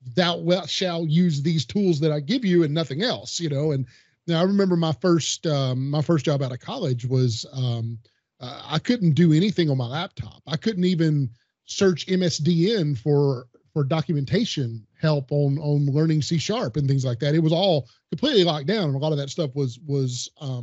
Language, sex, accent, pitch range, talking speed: English, male, American, 130-175 Hz, 205 wpm